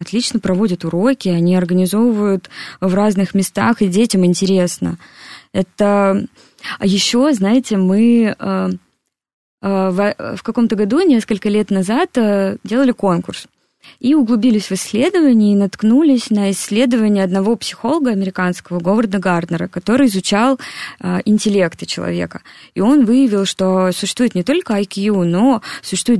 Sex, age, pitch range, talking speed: female, 20-39, 185-235 Hz, 120 wpm